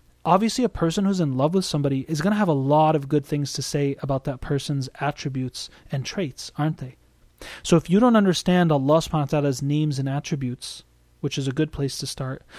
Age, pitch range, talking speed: 30-49, 140-170 Hz, 205 wpm